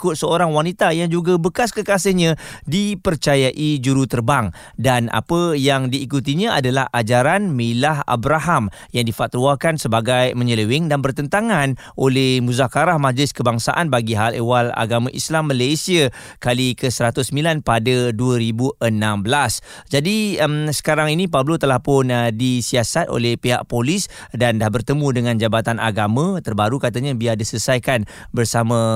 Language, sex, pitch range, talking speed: Malay, male, 120-155 Hz, 125 wpm